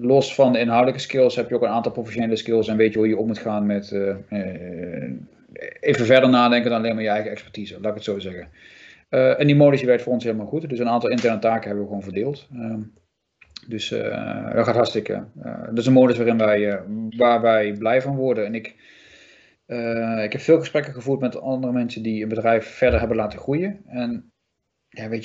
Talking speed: 215 wpm